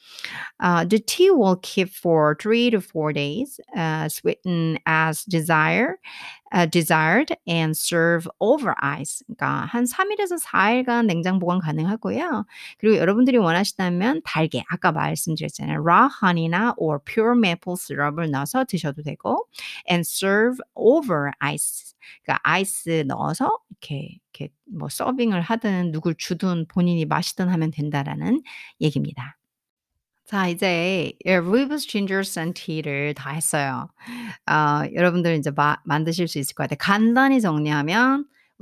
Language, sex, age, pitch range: Korean, female, 50-69, 160-235 Hz